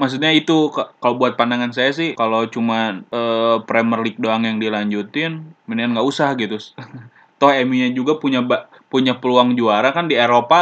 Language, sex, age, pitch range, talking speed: Indonesian, male, 20-39, 110-125 Hz, 165 wpm